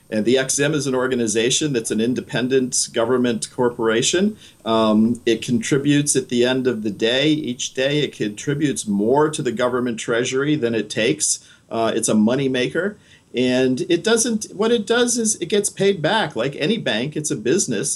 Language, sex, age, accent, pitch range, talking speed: English, male, 50-69, American, 115-160 Hz, 180 wpm